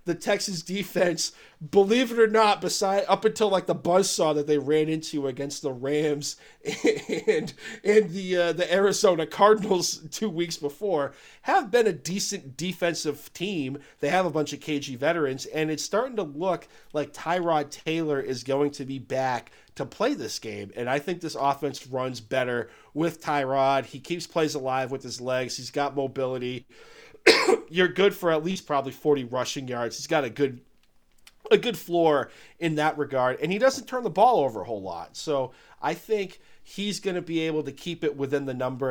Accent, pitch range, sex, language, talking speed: American, 130-180 Hz, male, English, 190 wpm